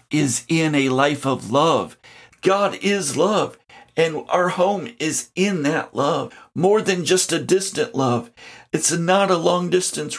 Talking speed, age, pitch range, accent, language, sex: 160 wpm, 50-69, 145-185 Hz, American, English, male